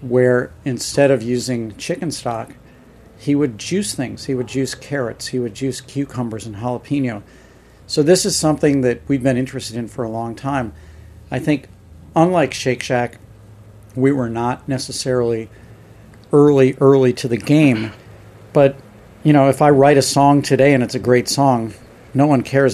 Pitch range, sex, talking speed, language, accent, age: 120-145 Hz, male, 170 wpm, English, American, 50-69